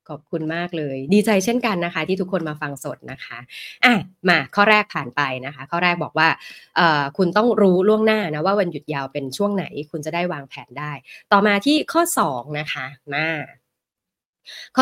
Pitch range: 150-200 Hz